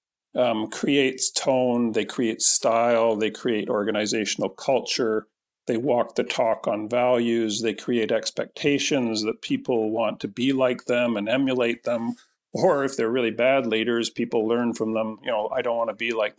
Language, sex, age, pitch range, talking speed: English, male, 50-69, 110-135 Hz, 170 wpm